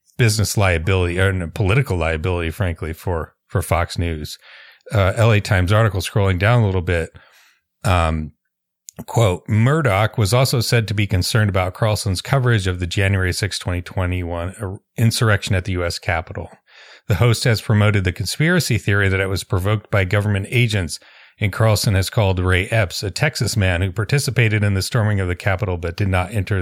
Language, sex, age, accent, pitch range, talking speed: English, male, 40-59, American, 90-110 Hz, 175 wpm